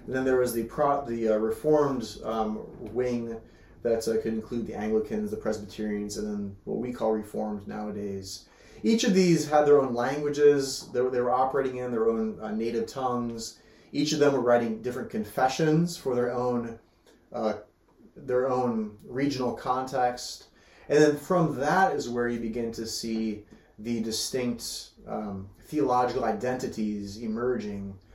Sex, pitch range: male, 105-130 Hz